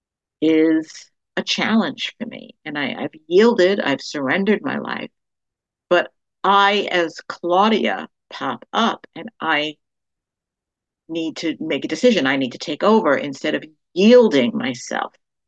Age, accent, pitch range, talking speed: 60-79, American, 145-220 Hz, 135 wpm